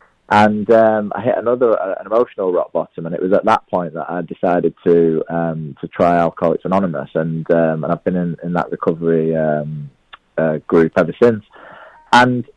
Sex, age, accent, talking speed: male, 20-39, British, 190 wpm